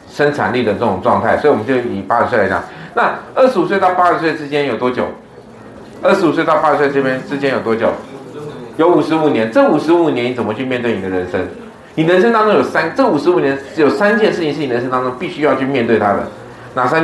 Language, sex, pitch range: Chinese, male, 120-175 Hz